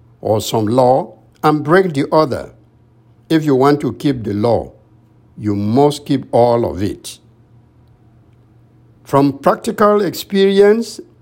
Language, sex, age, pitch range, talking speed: English, male, 60-79, 115-165 Hz, 125 wpm